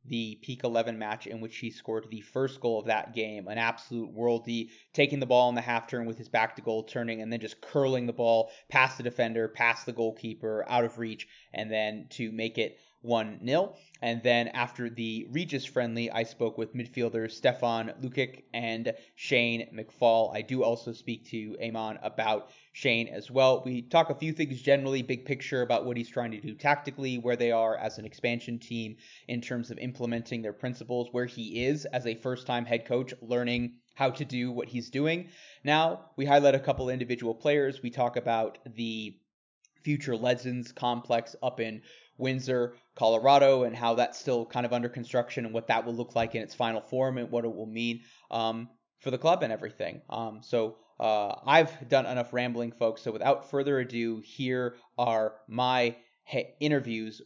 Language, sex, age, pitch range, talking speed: English, male, 30-49, 115-130 Hz, 190 wpm